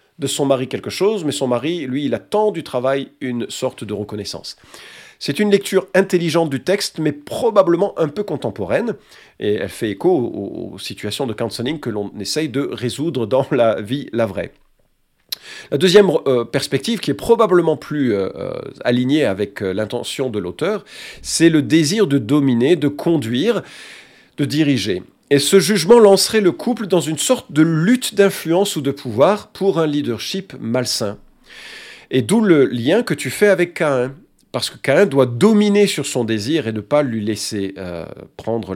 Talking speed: 170 wpm